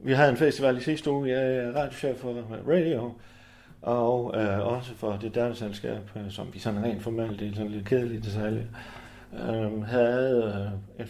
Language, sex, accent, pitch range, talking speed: Danish, male, native, 105-125 Hz, 190 wpm